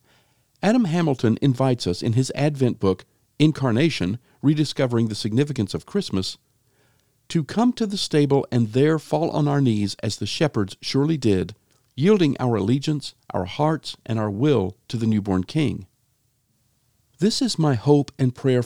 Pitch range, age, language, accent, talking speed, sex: 115-150 Hz, 50-69, English, American, 155 wpm, male